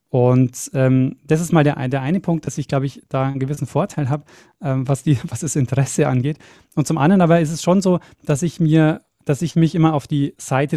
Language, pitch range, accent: German, 135-160 Hz, German